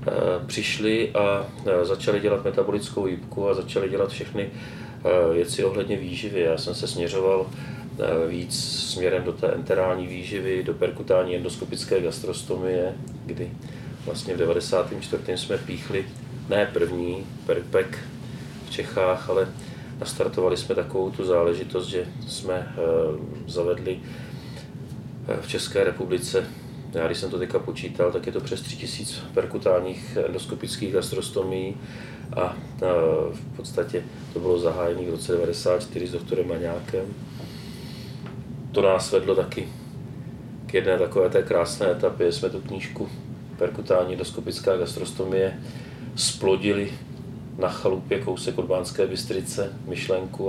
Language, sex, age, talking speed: Slovak, male, 30-49, 120 wpm